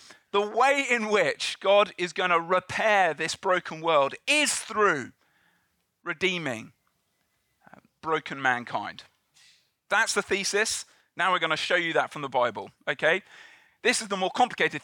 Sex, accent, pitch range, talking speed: male, British, 145-215 Hz, 145 wpm